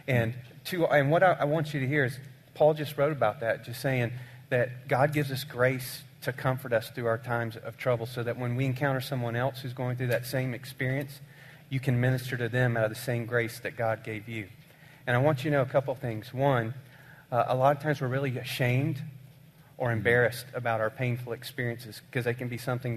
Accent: American